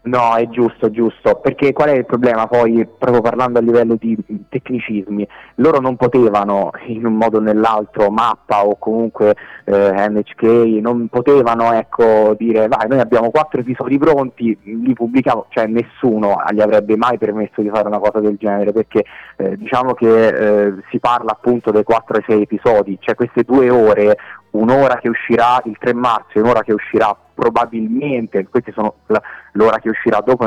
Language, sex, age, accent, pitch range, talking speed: Italian, male, 30-49, native, 105-120 Hz, 175 wpm